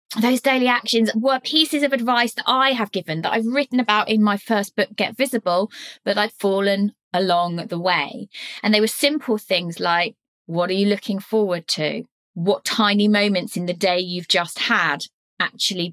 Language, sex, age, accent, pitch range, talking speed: English, female, 20-39, British, 185-240 Hz, 185 wpm